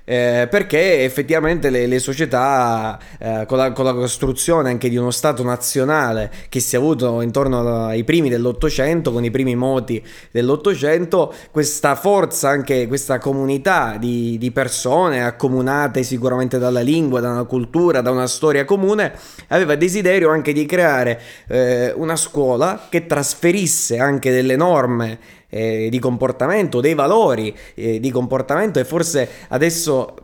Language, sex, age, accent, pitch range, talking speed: Italian, male, 20-39, native, 125-155 Hz, 145 wpm